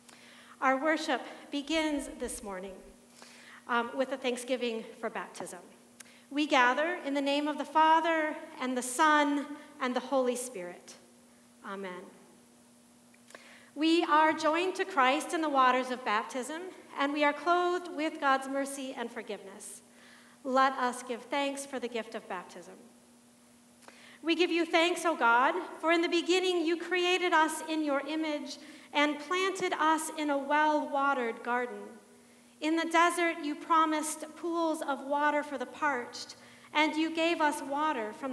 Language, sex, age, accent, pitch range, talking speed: English, female, 40-59, American, 255-320 Hz, 150 wpm